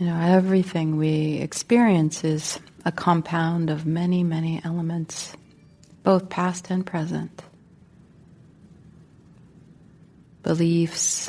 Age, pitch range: 30-49, 165-180 Hz